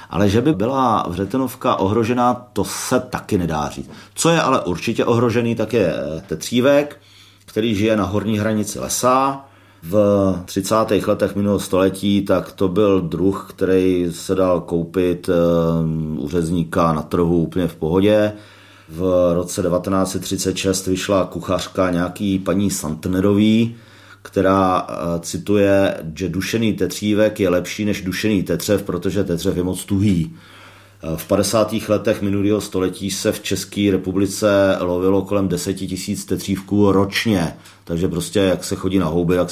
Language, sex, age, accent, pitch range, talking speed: Czech, male, 40-59, native, 90-105 Hz, 135 wpm